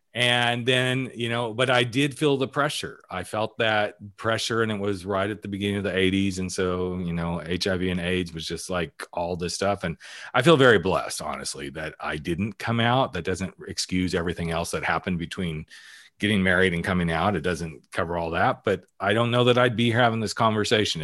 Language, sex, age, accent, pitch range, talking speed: English, male, 40-59, American, 85-110 Hz, 215 wpm